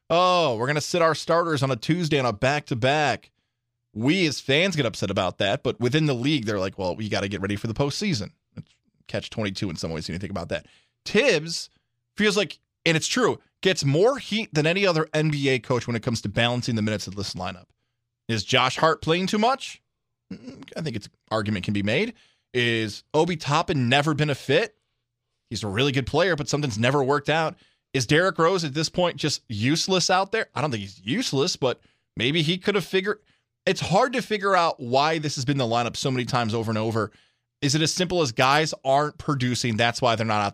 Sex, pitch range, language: male, 115-160 Hz, English